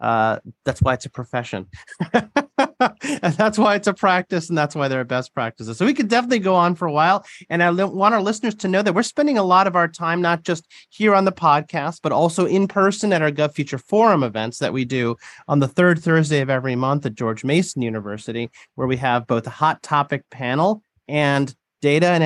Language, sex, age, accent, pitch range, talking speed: English, male, 30-49, American, 135-180 Hz, 225 wpm